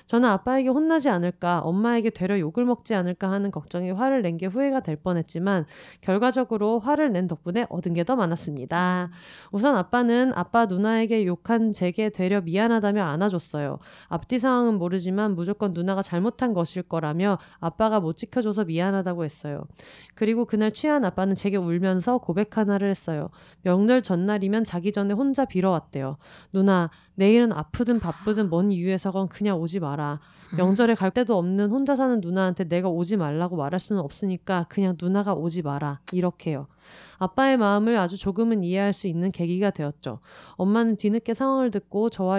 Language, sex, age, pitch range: Korean, female, 30-49, 180-225 Hz